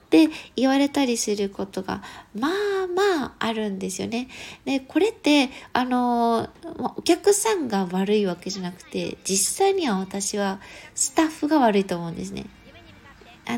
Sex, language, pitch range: female, Japanese, 210-335 Hz